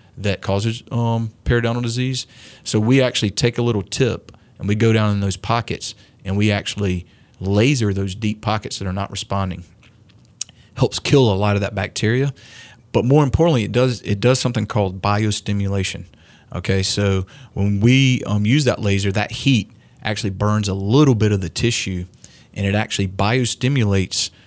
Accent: American